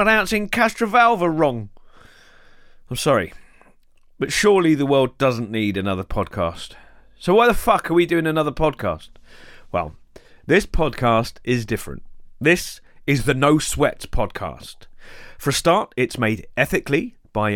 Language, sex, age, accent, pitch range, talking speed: English, male, 30-49, British, 105-160 Hz, 135 wpm